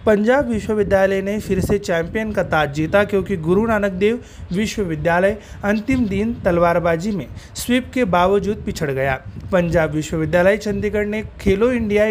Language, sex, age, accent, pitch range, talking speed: Marathi, male, 30-49, native, 170-215 Hz, 145 wpm